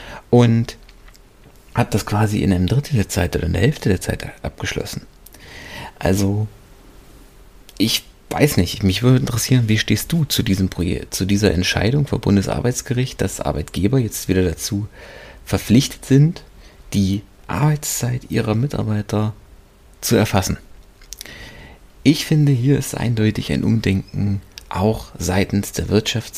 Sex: male